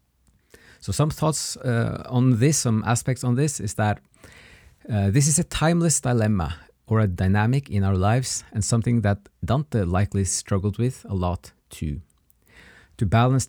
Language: English